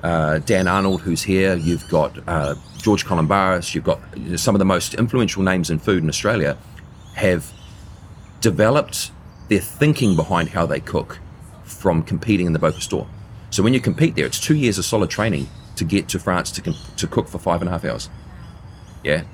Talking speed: 190 wpm